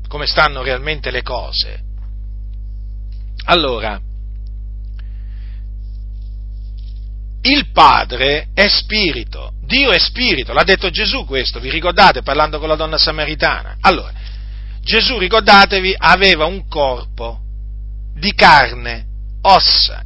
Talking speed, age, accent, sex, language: 100 wpm, 40-59, native, male, Italian